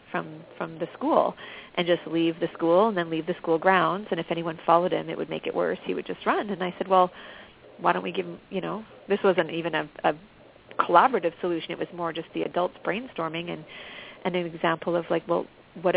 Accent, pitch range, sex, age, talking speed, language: American, 170-195 Hz, female, 40-59, 230 wpm, English